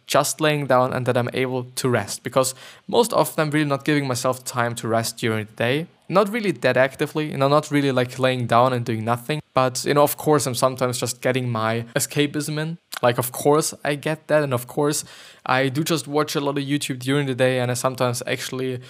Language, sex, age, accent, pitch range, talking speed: English, male, 20-39, German, 125-150 Hz, 230 wpm